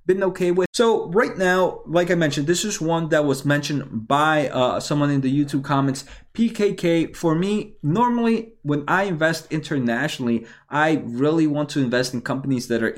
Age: 20-39